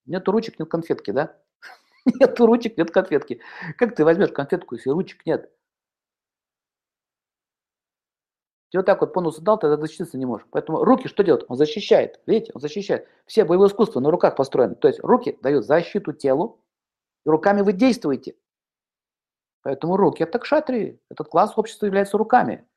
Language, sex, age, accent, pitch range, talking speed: Russian, male, 50-69, native, 150-205 Hz, 160 wpm